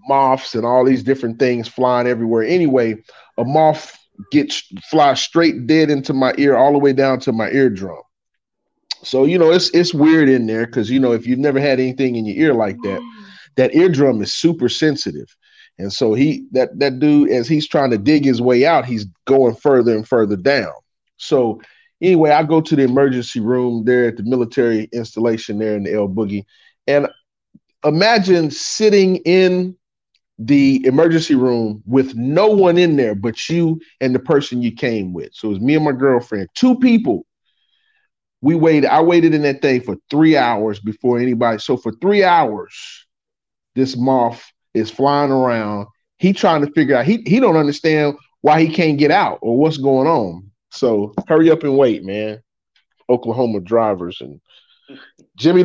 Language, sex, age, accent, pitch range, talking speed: English, male, 30-49, American, 120-160 Hz, 180 wpm